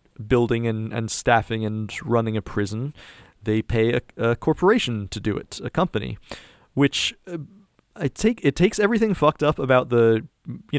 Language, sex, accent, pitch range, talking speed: English, male, American, 115-140 Hz, 160 wpm